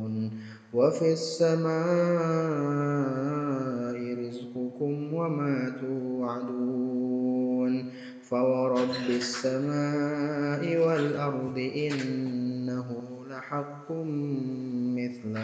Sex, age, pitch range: male, 20-39, 125-145 Hz